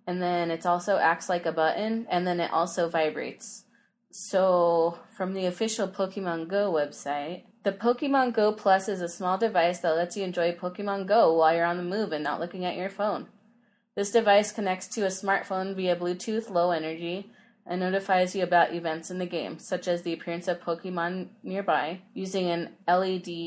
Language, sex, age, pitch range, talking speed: English, female, 20-39, 170-210 Hz, 185 wpm